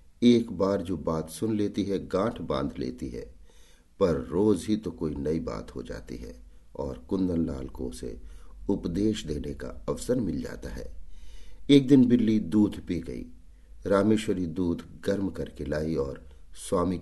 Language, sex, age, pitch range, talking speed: Hindi, male, 50-69, 80-105 Hz, 160 wpm